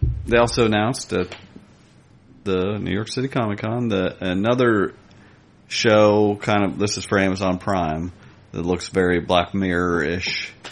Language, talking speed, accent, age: English, 140 wpm, American, 40-59